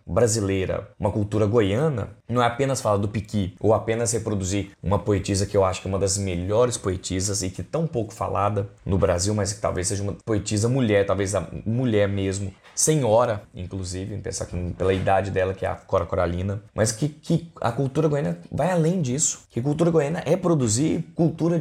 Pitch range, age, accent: 95-135 Hz, 20-39, Brazilian